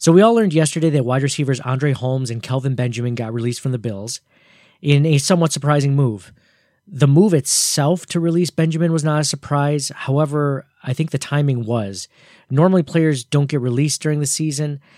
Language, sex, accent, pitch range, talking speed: English, male, American, 125-160 Hz, 190 wpm